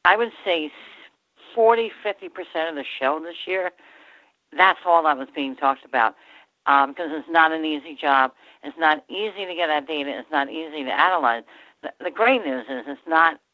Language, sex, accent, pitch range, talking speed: English, female, American, 140-170 Hz, 190 wpm